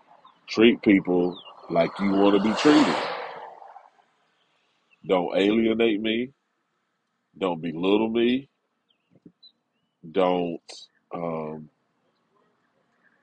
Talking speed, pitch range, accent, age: 75 wpm, 90-110 Hz, American, 30-49